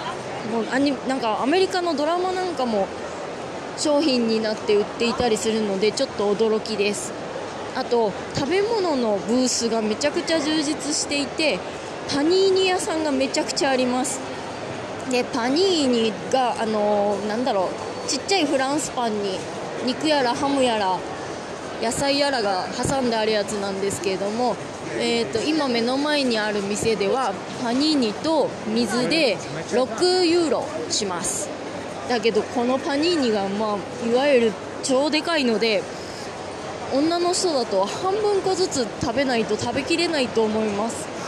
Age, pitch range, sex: 20-39, 220-300 Hz, female